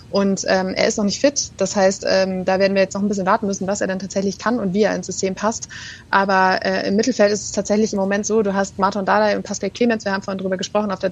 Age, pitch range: 20-39, 185-215 Hz